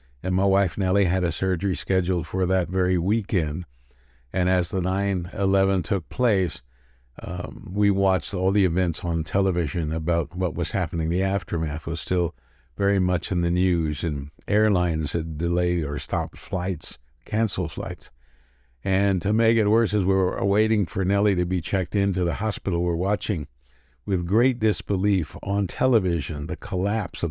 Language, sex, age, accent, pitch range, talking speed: English, male, 60-79, American, 80-100 Hz, 165 wpm